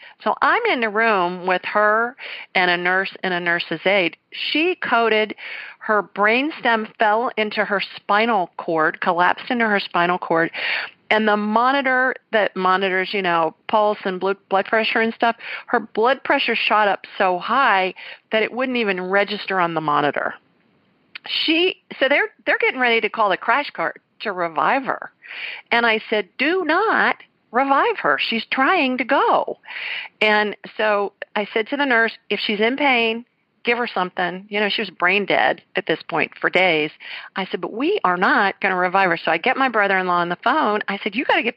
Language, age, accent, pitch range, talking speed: English, 50-69, American, 195-255 Hz, 190 wpm